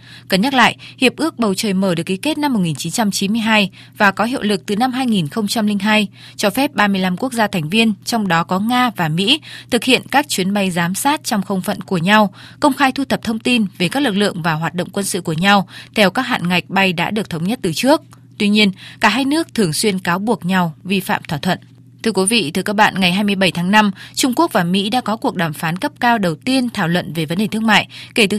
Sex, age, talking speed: female, 20-39, 250 wpm